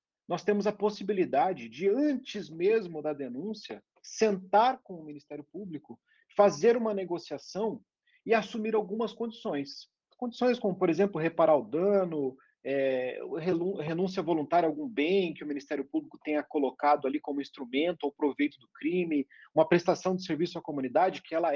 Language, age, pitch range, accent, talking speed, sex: Portuguese, 40-59, 150-210 Hz, Brazilian, 155 wpm, male